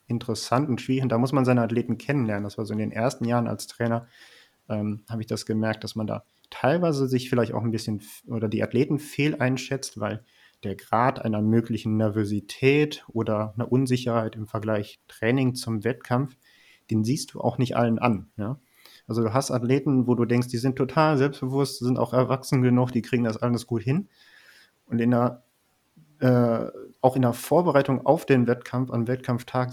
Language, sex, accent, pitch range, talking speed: German, male, German, 115-130 Hz, 180 wpm